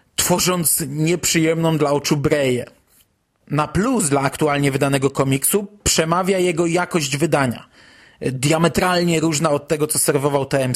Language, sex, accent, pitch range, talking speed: Polish, male, native, 145-190 Hz, 125 wpm